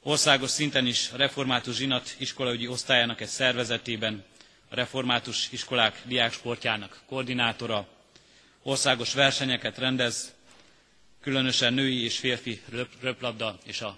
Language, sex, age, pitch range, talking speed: Hungarian, male, 30-49, 110-130 Hz, 105 wpm